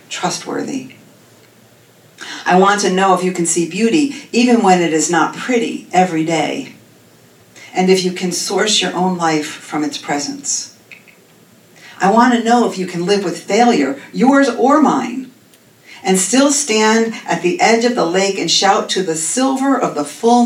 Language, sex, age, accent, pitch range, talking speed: English, female, 50-69, American, 165-215 Hz, 175 wpm